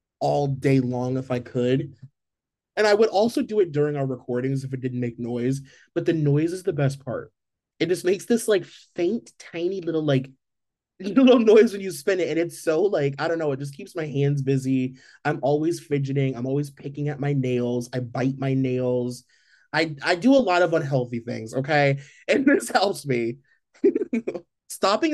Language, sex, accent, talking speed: English, male, American, 195 wpm